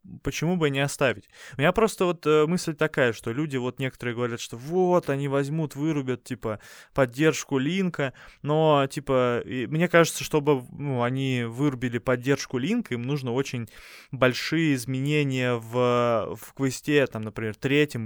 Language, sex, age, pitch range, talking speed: Russian, male, 20-39, 125-155 Hz, 145 wpm